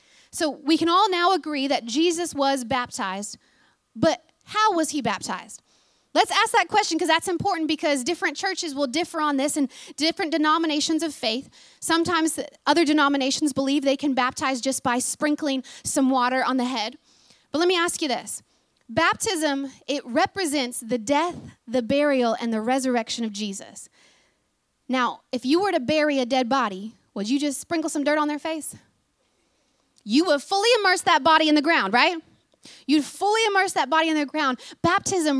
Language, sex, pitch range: English, female, 265-325 Hz